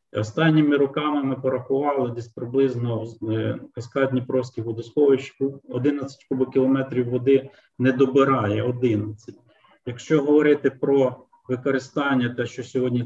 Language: Ukrainian